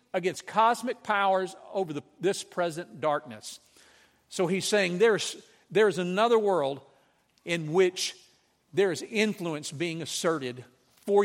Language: English